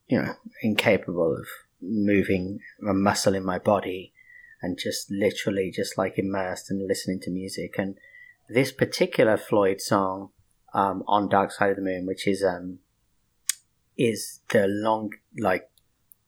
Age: 30-49